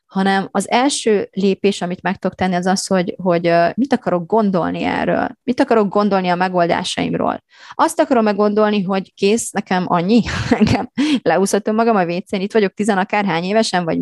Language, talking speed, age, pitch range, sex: Hungarian, 165 wpm, 30-49, 180-215 Hz, female